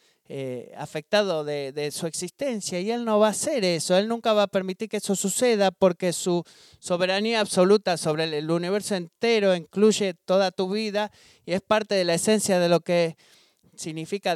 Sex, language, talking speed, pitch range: male, Spanish, 180 wpm, 155-200 Hz